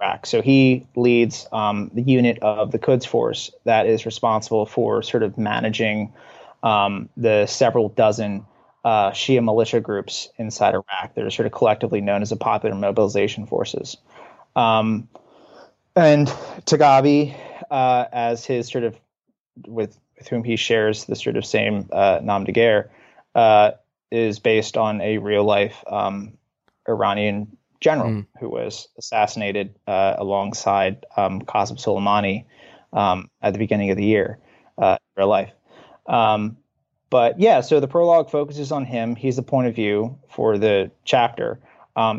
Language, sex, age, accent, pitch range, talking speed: English, male, 20-39, American, 105-125 Hz, 145 wpm